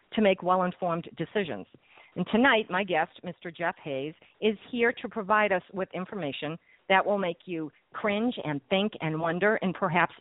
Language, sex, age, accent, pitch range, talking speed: English, female, 50-69, American, 155-195 Hz, 170 wpm